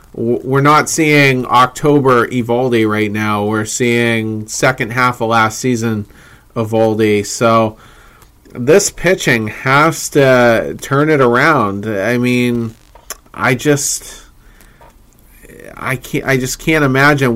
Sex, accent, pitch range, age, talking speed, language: male, American, 115-135 Hz, 30-49, 115 wpm, English